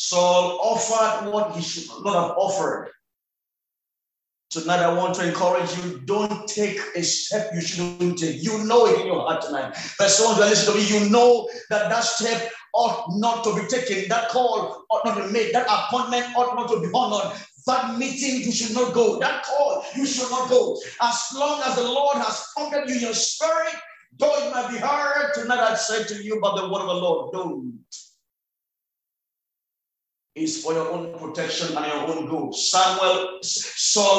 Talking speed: 190 wpm